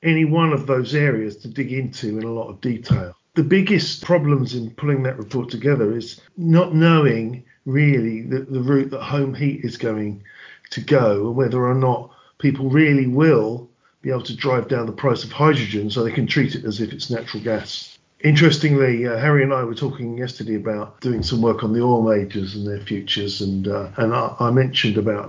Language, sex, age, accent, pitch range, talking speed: English, male, 50-69, British, 110-140 Hz, 205 wpm